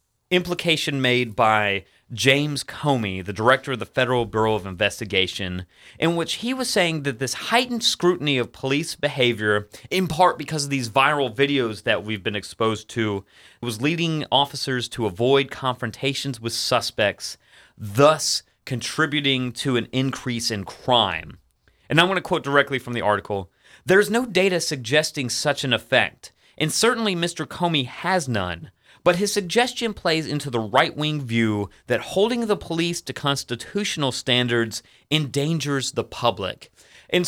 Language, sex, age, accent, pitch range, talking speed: English, male, 30-49, American, 120-175 Hz, 150 wpm